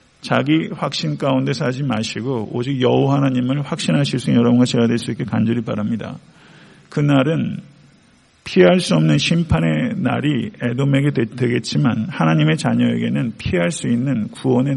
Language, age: Korean, 50-69